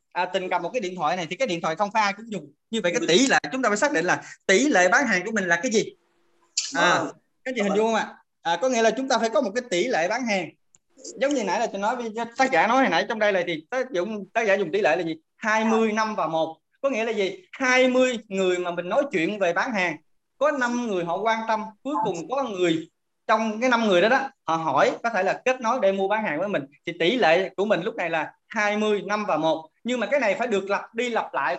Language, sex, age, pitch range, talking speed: Vietnamese, male, 20-39, 175-235 Hz, 285 wpm